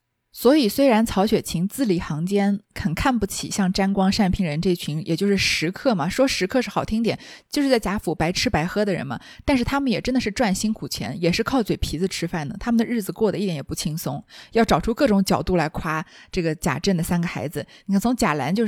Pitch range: 180-235 Hz